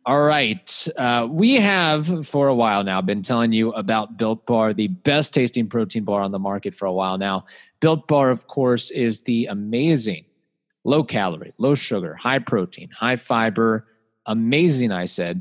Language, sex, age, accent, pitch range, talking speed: English, male, 30-49, American, 110-155 Hz, 160 wpm